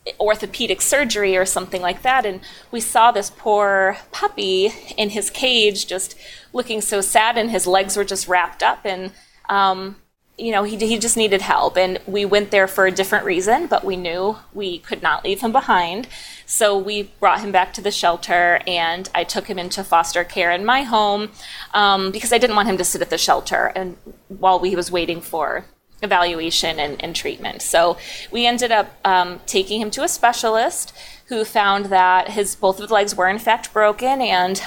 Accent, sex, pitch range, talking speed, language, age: American, female, 185-215 Hz, 195 wpm, English, 30-49